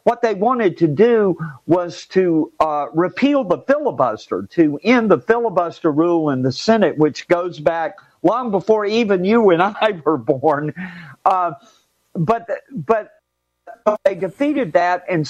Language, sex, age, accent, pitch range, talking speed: English, male, 50-69, American, 165-220 Hz, 145 wpm